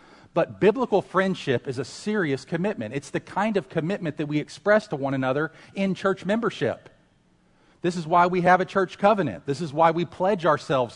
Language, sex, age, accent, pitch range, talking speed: English, male, 40-59, American, 115-170 Hz, 190 wpm